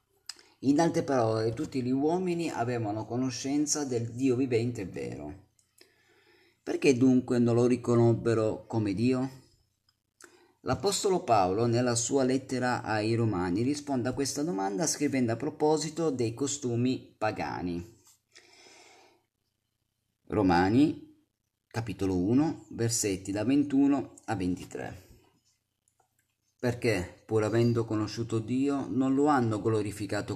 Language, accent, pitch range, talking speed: Italian, native, 105-130 Hz, 105 wpm